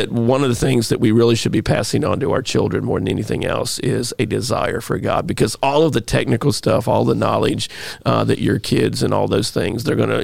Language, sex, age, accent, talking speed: English, male, 40-59, American, 250 wpm